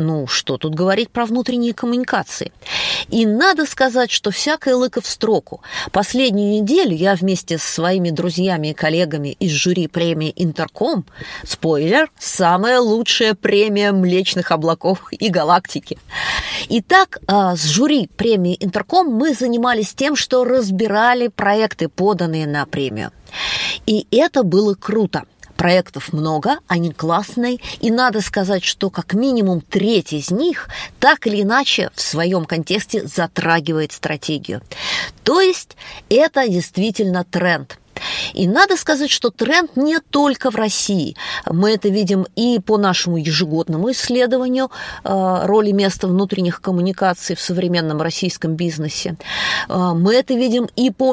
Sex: female